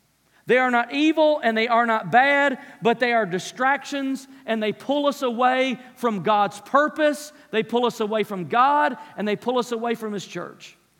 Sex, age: male, 40-59